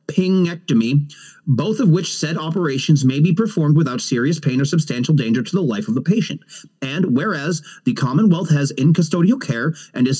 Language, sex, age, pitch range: English, male, 30-49, 140-180 Hz